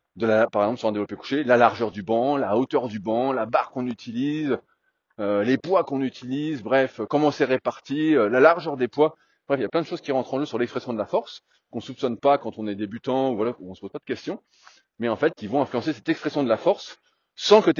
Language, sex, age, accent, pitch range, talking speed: French, male, 30-49, French, 115-170 Hz, 275 wpm